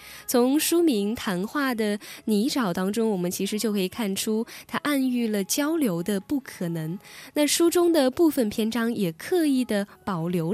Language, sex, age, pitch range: Chinese, female, 10-29, 185-265 Hz